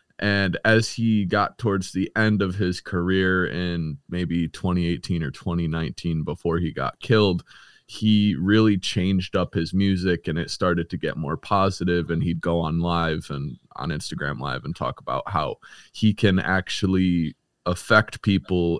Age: 20-39